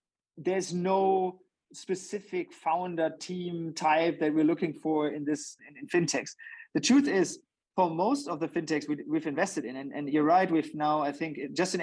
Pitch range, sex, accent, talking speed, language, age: 145-175 Hz, male, German, 190 wpm, English, 30-49